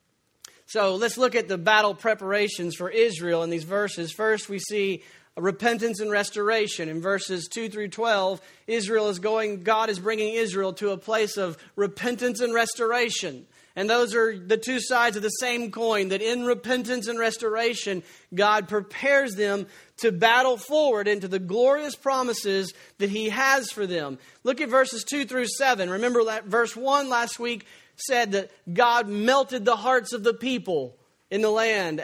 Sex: male